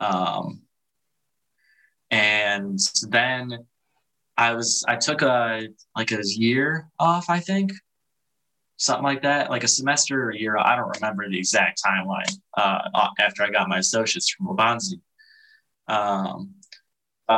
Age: 20-39